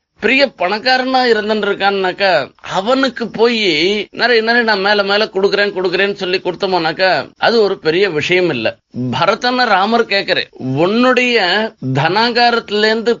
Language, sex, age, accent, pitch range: Tamil, male, 30-49, native, 200-245 Hz